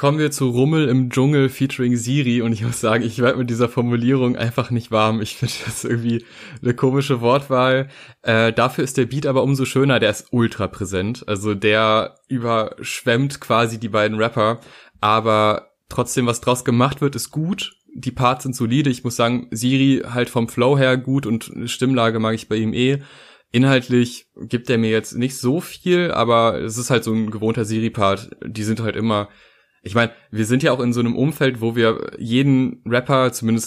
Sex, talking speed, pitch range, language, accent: male, 195 wpm, 110-130 Hz, German, German